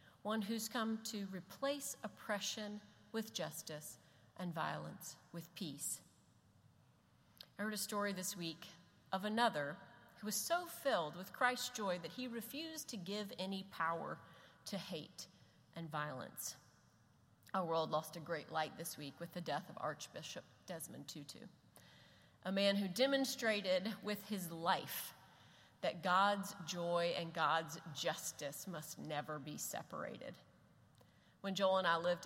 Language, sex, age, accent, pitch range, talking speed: English, female, 40-59, American, 165-205 Hz, 140 wpm